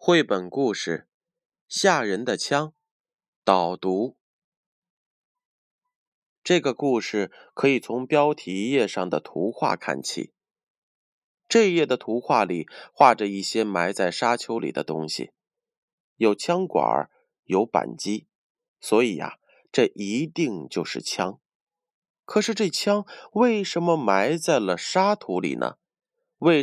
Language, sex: Chinese, male